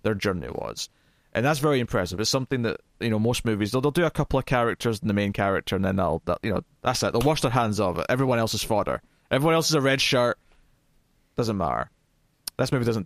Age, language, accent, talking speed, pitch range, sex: 20-39, English, British, 250 wpm, 100-130 Hz, male